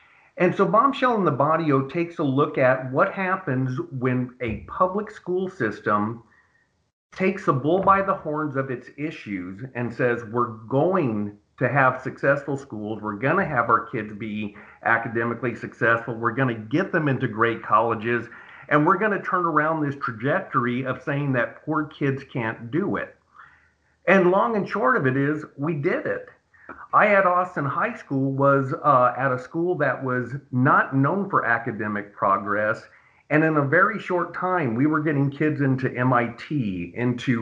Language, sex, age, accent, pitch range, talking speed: English, male, 50-69, American, 120-155 Hz, 170 wpm